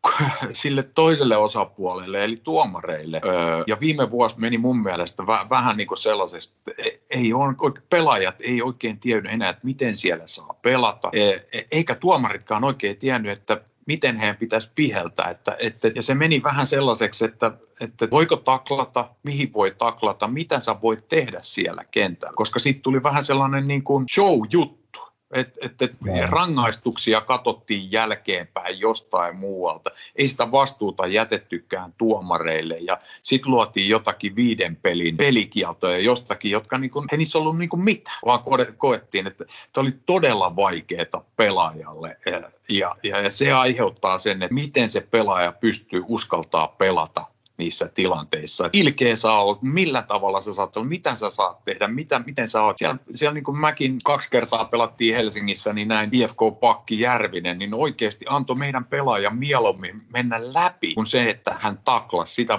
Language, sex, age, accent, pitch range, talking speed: Finnish, male, 50-69, native, 105-140 Hz, 145 wpm